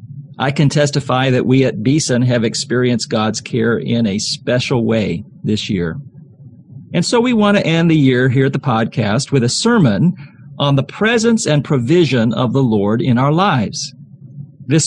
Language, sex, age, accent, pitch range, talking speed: English, male, 40-59, American, 125-160 Hz, 180 wpm